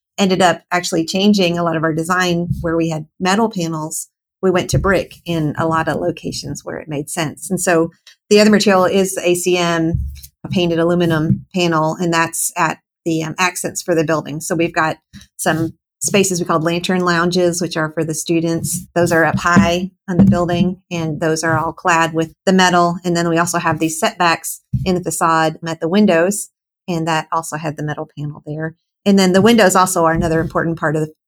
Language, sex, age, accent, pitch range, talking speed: English, female, 40-59, American, 160-180 Hz, 205 wpm